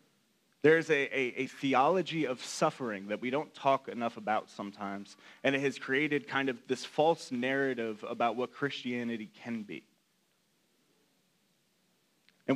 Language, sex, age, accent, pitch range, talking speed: English, male, 30-49, American, 130-165 Hz, 145 wpm